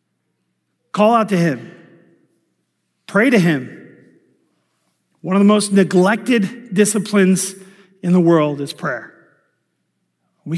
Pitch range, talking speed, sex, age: 170-225 Hz, 110 wpm, male, 50-69